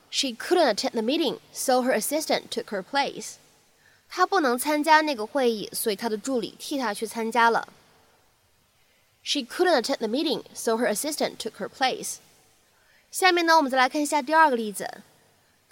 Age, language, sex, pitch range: 20-39, Chinese, female, 225-310 Hz